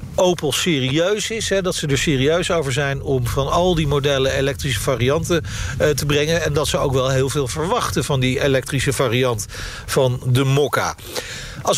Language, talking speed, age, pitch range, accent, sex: Dutch, 185 wpm, 50-69, 140-180 Hz, Dutch, male